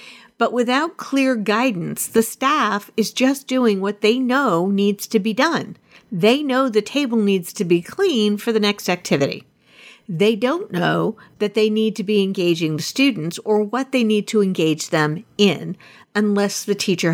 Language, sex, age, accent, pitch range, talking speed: English, female, 50-69, American, 175-240 Hz, 175 wpm